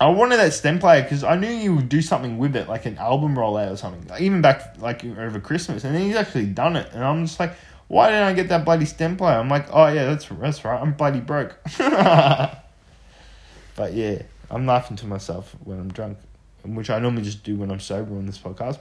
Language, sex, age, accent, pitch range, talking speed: English, male, 20-39, Australian, 105-170 Hz, 235 wpm